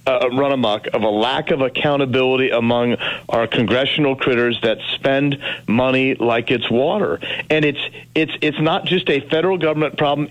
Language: English